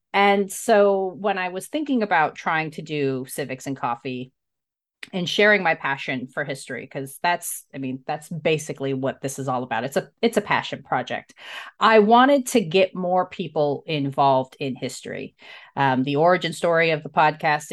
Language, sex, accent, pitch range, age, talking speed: English, female, American, 145-200 Hz, 30-49, 175 wpm